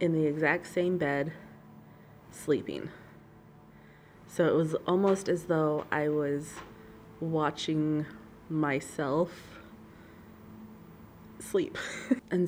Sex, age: female, 20-39